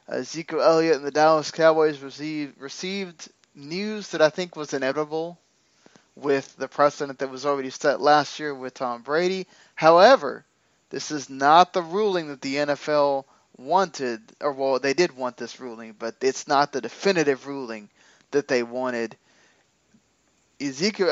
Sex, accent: male, American